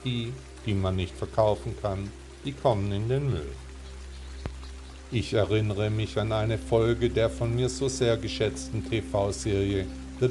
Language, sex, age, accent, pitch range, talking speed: German, male, 50-69, German, 75-115 Hz, 145 wpm